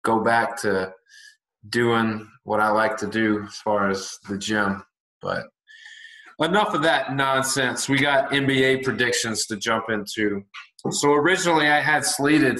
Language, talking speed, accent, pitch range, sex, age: English, 150 wpm, American, 120-140 Hz, male, 20-39